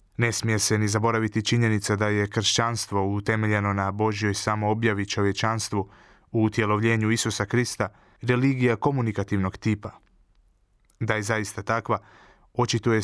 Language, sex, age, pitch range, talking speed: Croatian, male, 20-39, 105-115 Hz, 120 wpm